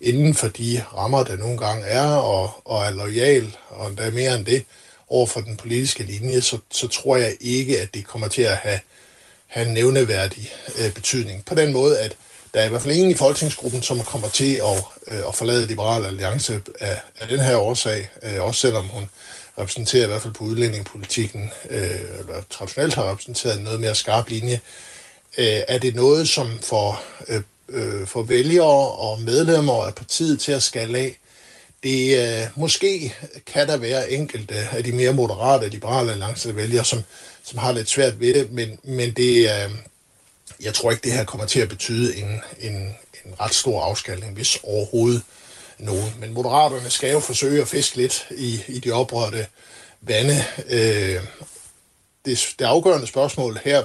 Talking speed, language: 180 wpm, Danish